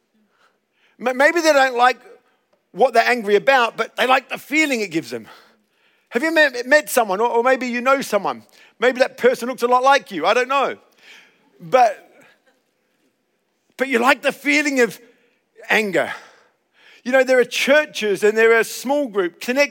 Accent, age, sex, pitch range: British, 50-69, male, 230-290 Hz